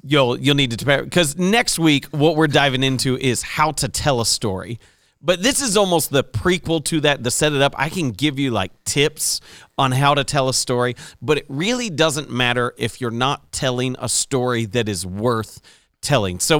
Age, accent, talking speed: 40-59, American, 210 wpm